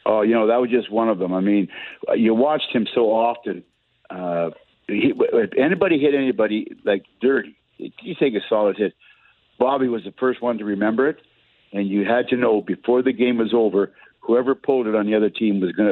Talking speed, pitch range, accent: 205 wpm, 100-125 Hz, American